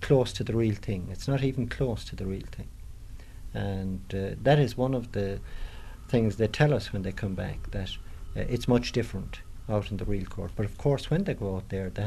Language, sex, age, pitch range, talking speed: English, male, 50-69, 100-120 Hz, 235 wpm